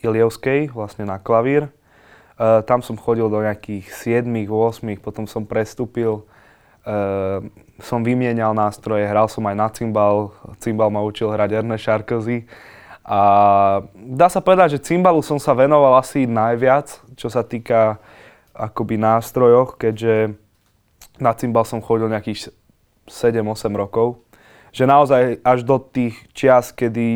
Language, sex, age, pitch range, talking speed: Slovak, male, 20-39, 105-120 Hz, 130 wpm